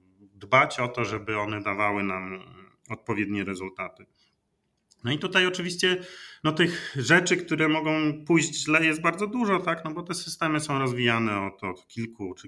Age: 30-49